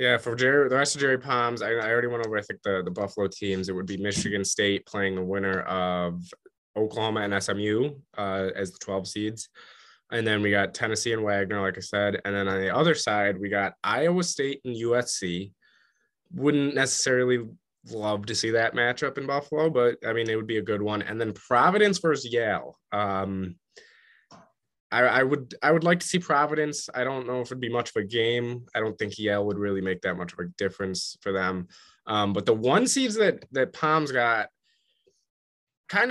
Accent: American